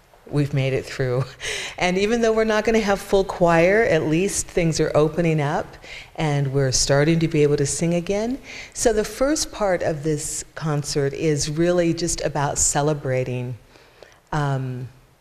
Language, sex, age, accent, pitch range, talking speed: English, female, 40-59, American, 140-175 Hz, 165 wpm